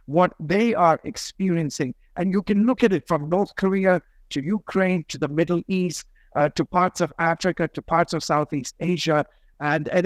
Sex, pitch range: male, 155-190 Hz